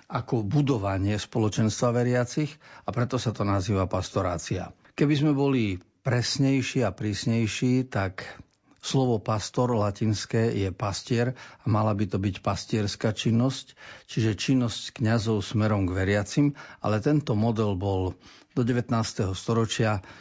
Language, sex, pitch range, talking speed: Slovak, male, 100-125 Hz, 125 wpm